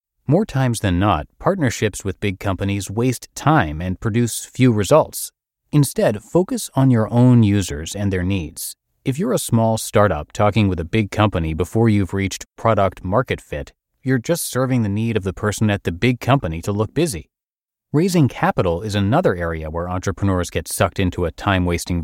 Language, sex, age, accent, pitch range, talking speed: English, male, 30-49, American, 95-125 Hz, 175 wpm